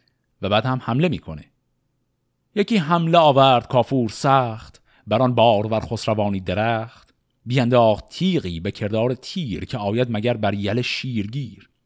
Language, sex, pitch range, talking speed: Persian, male, 110-145 Hz, 125 wpm